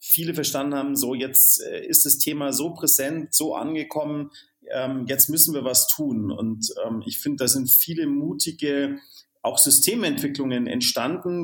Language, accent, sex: German, German, male